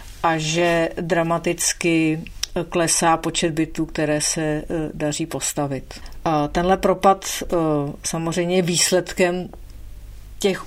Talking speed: 85 wpm